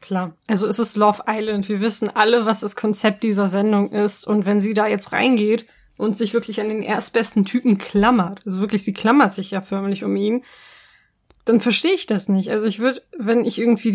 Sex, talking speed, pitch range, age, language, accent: female, 210 wpm, 205-235 Hz, 20-39, German, German